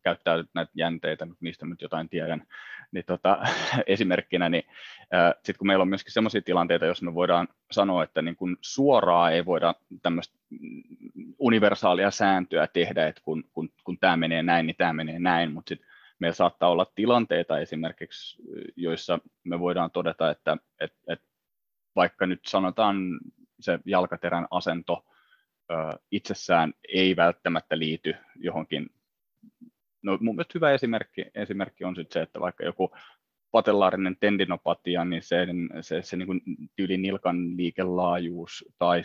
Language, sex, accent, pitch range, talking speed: Finnish, male, native, 85-100 Hz, 130 wpm